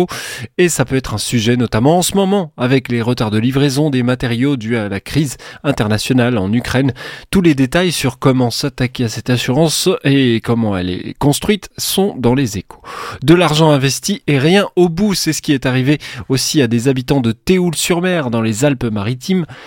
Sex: male